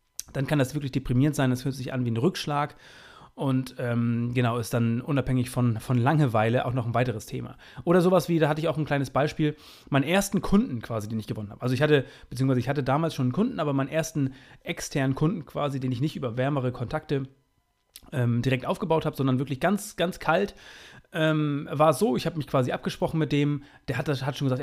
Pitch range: 130-165 Hz